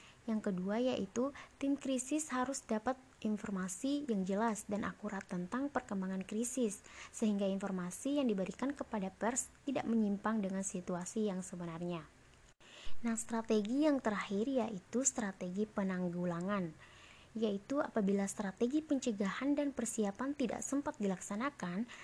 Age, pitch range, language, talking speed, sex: 20-39, 195-250 Hz, Indonesian, 115 wpm, female